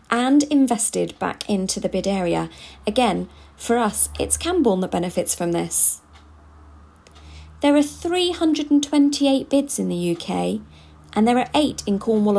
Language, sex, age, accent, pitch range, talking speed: English, female, 40-59, British, 170-260 Hz, 140 wpm